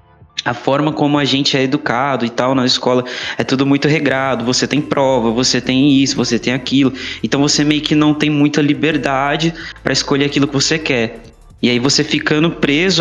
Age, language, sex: 20-39, Portuguese, male